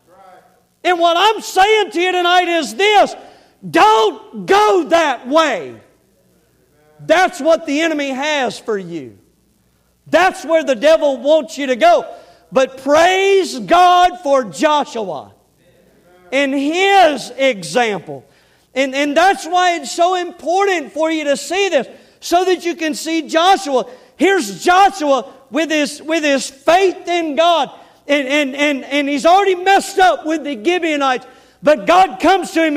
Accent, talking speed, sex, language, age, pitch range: American, 145 wpm, male, English, 40-59, 270-345 Hz